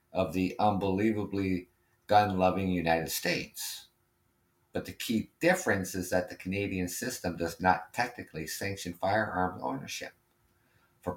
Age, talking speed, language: 50-69, 120 wpm, English